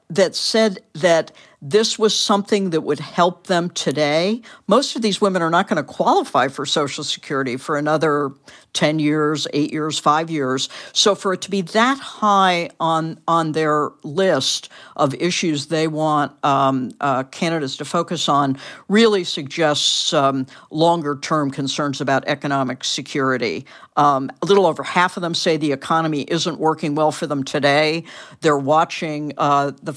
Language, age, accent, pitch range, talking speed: English, 60-79, American, 145-175 Hz, 160 wpm